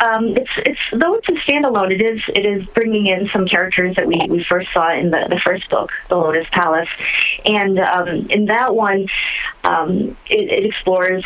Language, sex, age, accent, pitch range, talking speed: English, female, 20-39, American, 170-205 Hz, 195 wpm